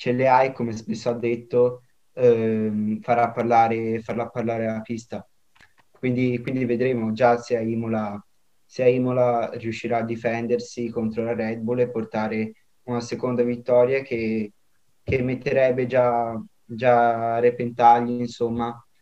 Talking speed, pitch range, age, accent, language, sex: 135 wpm, 115-125 Hz, 20-39, native, Italian, male